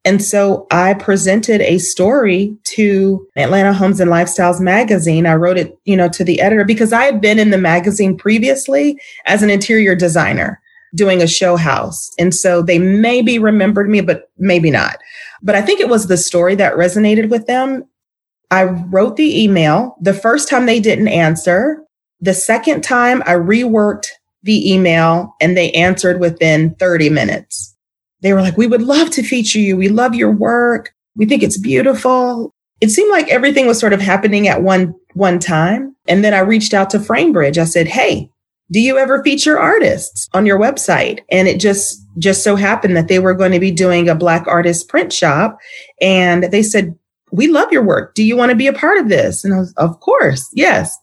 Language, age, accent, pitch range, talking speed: English, 30-49, American, 180-240 Hz, 195 wpm